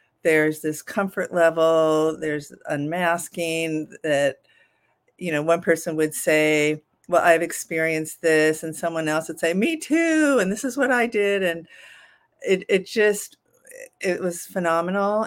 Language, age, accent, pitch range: English, 50-69, American, 155-180 Hz